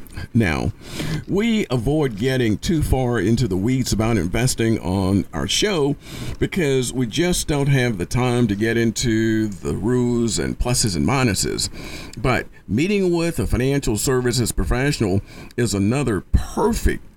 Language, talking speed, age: English, 140 wpm, 50-69